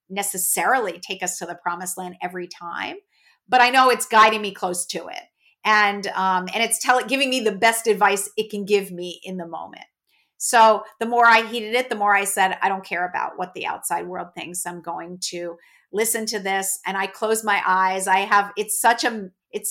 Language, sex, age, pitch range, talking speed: English, female, 50-69, 185-215 Hz, 215 wpm